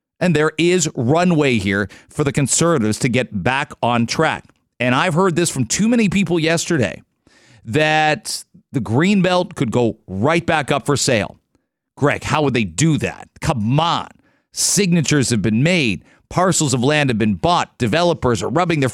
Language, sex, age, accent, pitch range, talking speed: English, male, 40-59, American, 125-165 Hz, 175 wpm